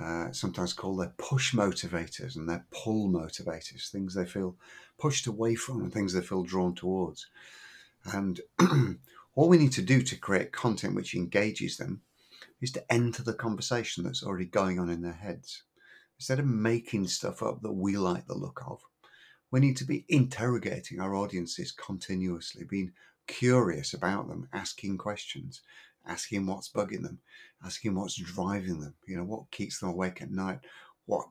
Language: English